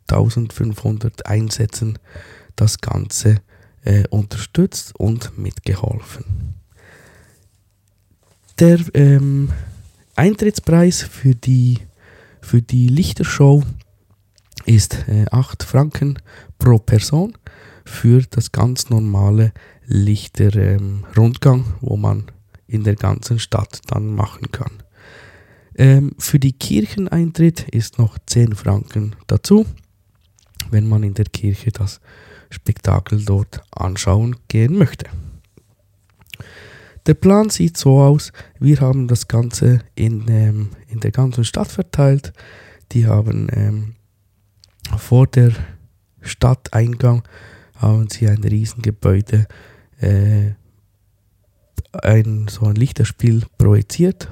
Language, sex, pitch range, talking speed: German, male, 100-125 Hz, 100 wpm